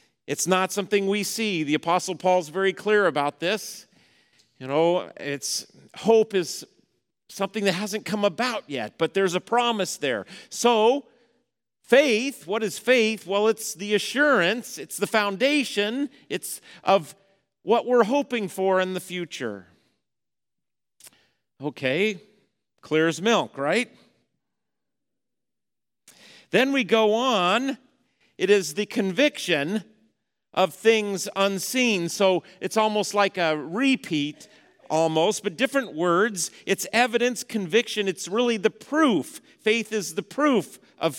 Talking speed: 125 wpm